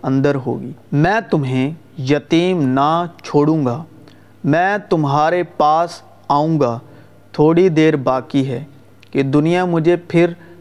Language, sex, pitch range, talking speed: Urdu, male, 140-175 Hz, 120 wpm